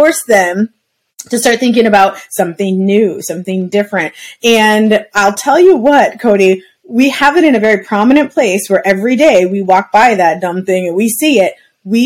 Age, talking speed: 20-39, 185 wpm